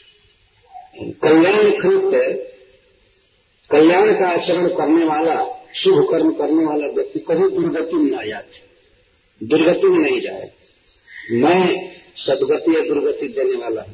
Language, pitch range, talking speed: Hindi, 355-435 Hz, 115 wpm